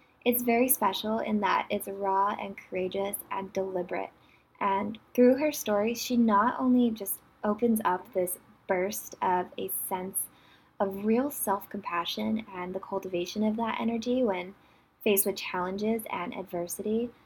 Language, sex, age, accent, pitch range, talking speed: English, female, 20-39, American, 185-225 Hz, 145 wpm